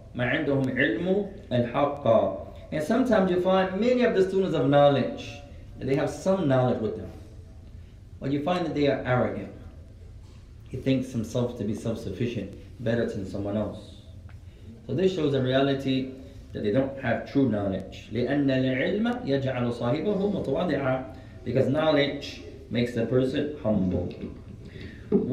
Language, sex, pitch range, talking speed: English, male, 100-145 Hz, 125 wpm